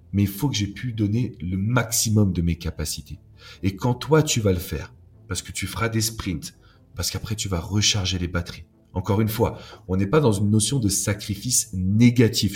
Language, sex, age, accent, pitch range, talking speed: French, male, 40-59, French, 90-115 Hz, 210 wpm